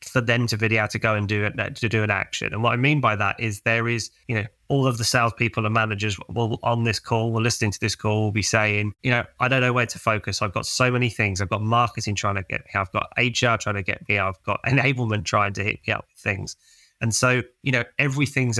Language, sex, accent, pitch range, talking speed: English, male, British, 105-120 Hz, 270 wpm